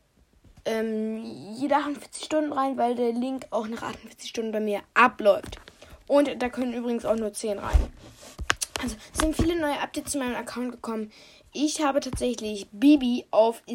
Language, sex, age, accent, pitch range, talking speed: German, female, 20-39, German, 215-300 Hz, 170 wpm